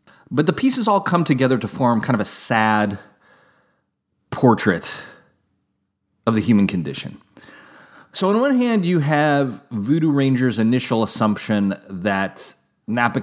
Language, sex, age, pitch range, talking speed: English, male, 30-49, 95-130 Hz, 130 wpm